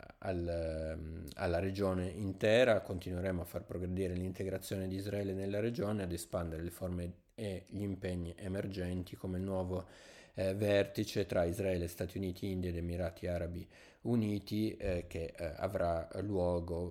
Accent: native